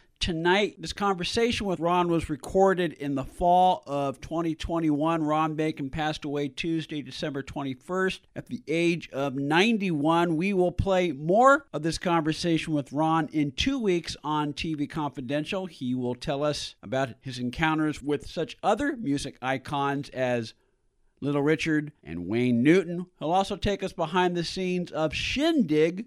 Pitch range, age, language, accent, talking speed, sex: 135-175 Hz, 50-69, English, American, 150 wpm, male